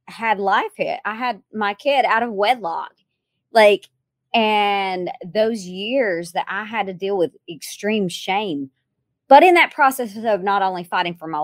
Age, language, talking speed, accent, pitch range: 30-49, English, 170 wpm, American, 185-270 Hz